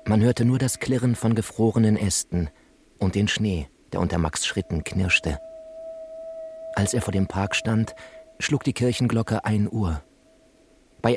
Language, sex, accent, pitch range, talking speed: German, male, German, 95-120 Hz, 150 wpm